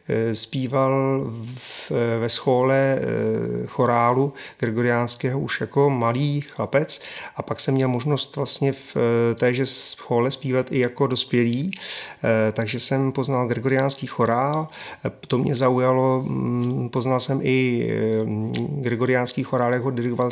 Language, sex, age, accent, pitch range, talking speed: Czech, male, 30-49, native, 125-140 Hz, 110 wpm